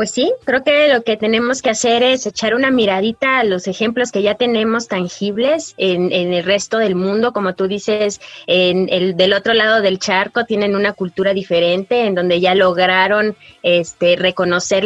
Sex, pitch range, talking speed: female, 180-210 Hz, 175 wpm